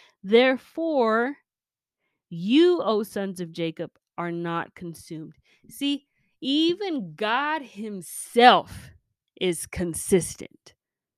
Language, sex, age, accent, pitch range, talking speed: English, female, 20-39, American, 180-255 Hz, 80 wpm